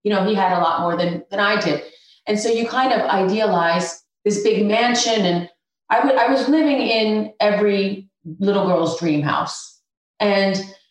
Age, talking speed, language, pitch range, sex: 30-49, 180 wpm, English, 185-230 Hz, female